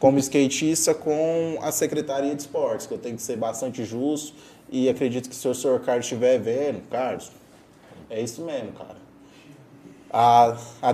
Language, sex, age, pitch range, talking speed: Portuguese, male, 20-39, 120-140 Hz, 165 wpm